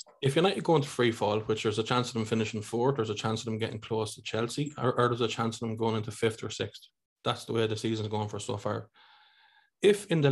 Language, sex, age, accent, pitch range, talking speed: English, male, 20-39, Irish, 110-125 Hz, 275 wpm